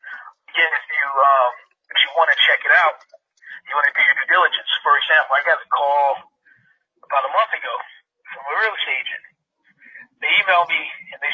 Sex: male